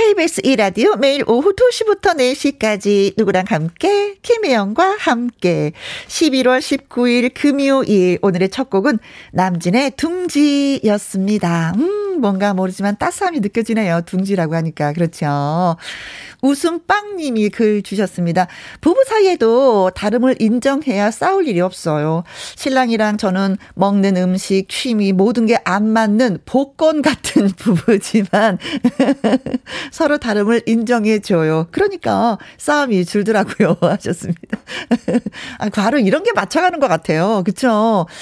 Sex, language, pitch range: female, Korean, 195-280 Hz